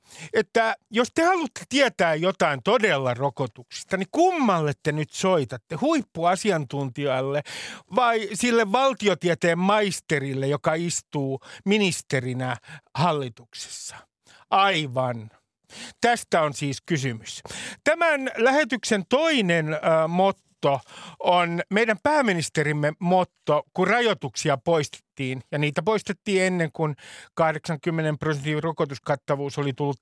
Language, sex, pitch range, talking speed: Finnish, male, 145-215 Hz, 95 wpm